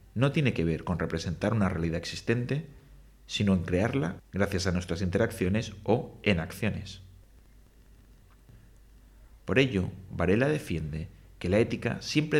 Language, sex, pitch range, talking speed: English, male, 90-115 Hz, 130 wpm